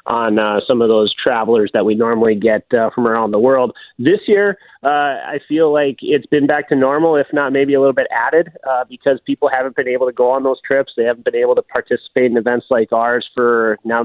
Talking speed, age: 240 wpm, 30-49